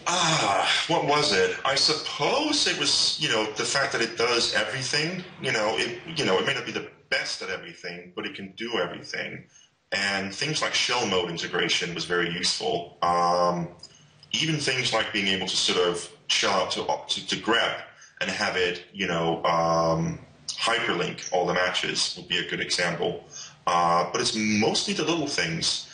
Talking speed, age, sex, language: 185 wpm, 30-49, male, English